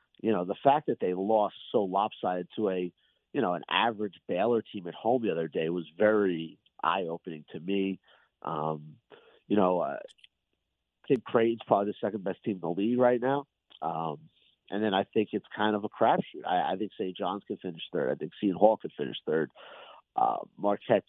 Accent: American